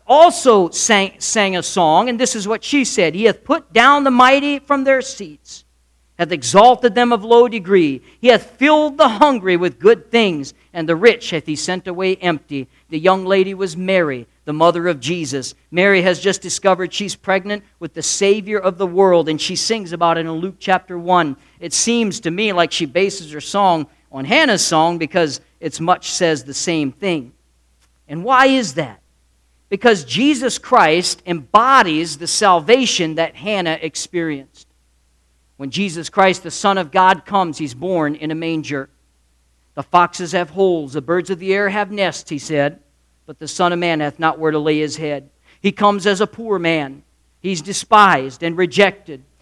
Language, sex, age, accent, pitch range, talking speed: English, male, 50-69, American, 155-210 Hz, 185 wpm